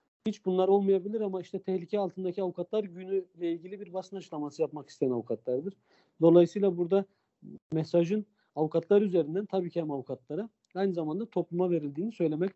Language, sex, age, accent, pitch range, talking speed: Turkish, male, 50-69, native, 140-175 Hz, 150 wpm